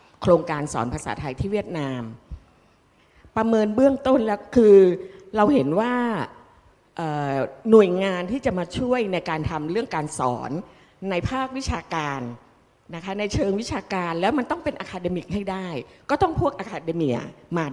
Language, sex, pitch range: Thai, female, 140-190 Hz